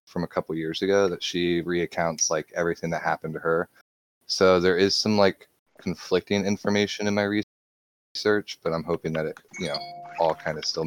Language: English